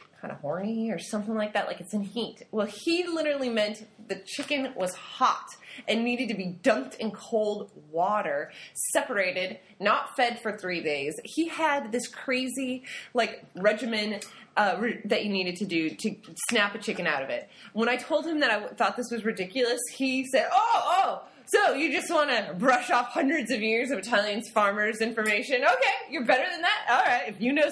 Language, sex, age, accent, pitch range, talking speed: English, female, 20-39, American, 210-295 Hz, 195 wpm